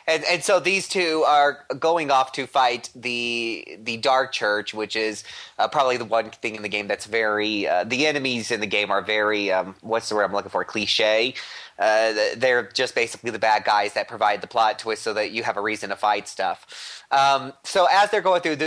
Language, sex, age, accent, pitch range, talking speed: English, male, 30-49, American, 115-150 Hz, 225 wpm